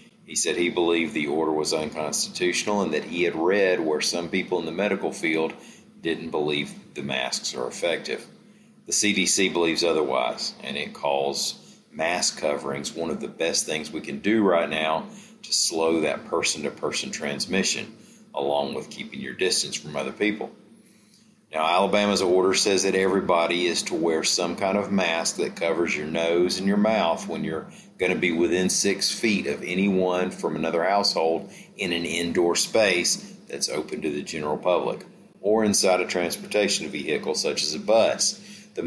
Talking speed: 170 wpm